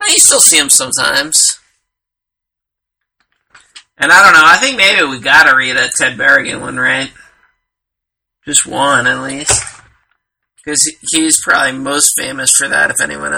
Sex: male